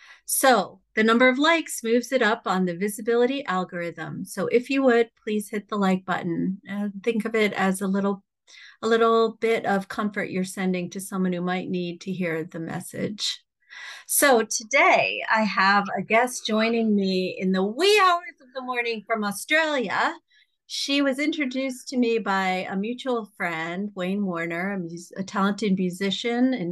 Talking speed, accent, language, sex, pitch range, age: 175 wpm, American, English, female, 190-255 Hz, 40-59